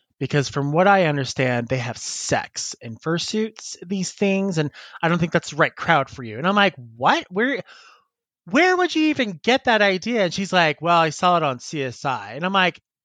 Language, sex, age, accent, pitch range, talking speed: English, male, 30-49, American, 140-185 Hz, 210 wpm